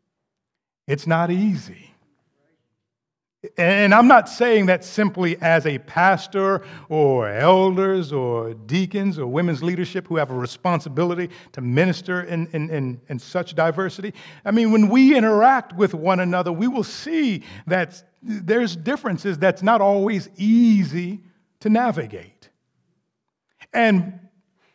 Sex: male